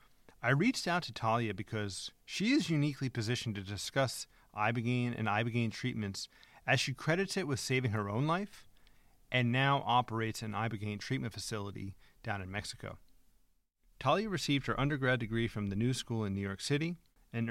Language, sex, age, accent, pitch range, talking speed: English, male, 40-59, American, 105-135 Hz, 170 wpm